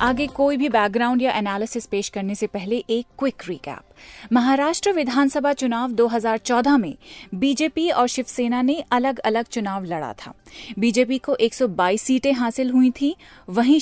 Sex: female